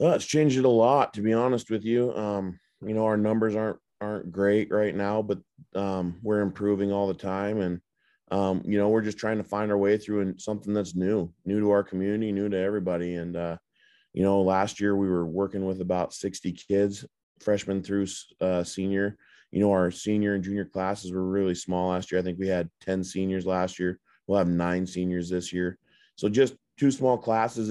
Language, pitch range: English, 90-100 Hz